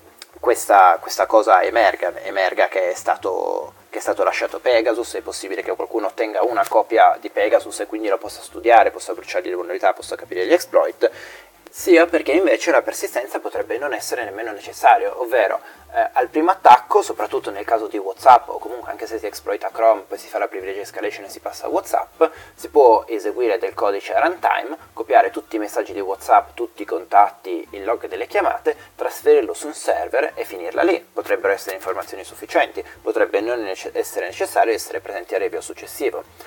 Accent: native